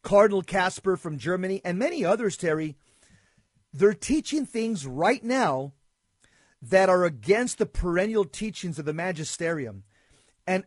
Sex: male